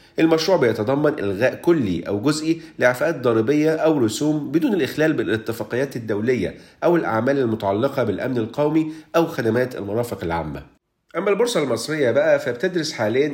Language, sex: Arabic, male